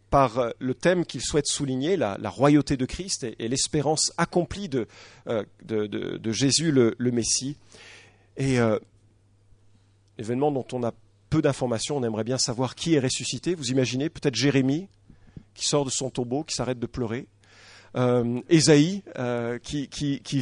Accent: French